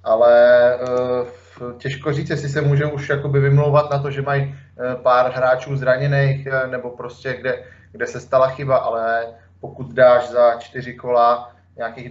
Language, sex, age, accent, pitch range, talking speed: Czech, male, 20-39, native, 115-125 Hz, 145 wpm